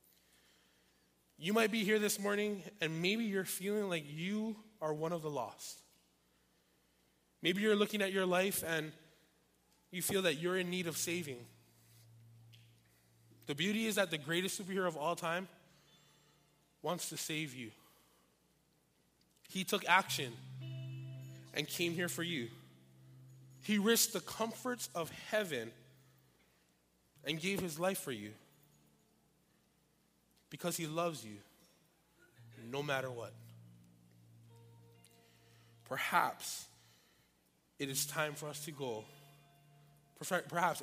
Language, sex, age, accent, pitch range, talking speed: English, male, 20-39, American, 115-175 Hz, 120 wpm